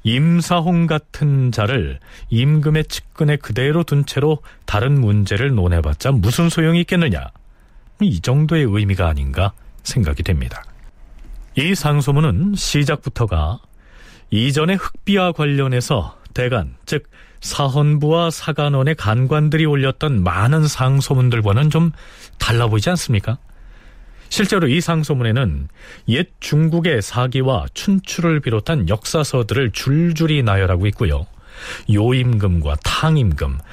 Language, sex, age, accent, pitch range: Korean, male, 40-59, native, 105-155 Hz